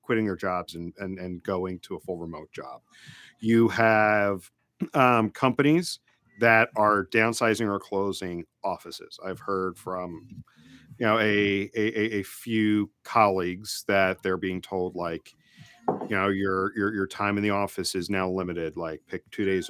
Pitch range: 95-110 Hz